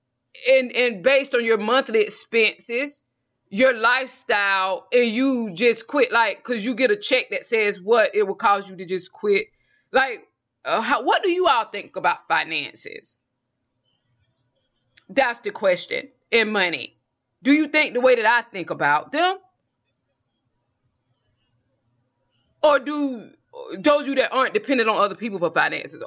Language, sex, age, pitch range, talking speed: English, female, 20-39, 195-275 Hz, 155 wpm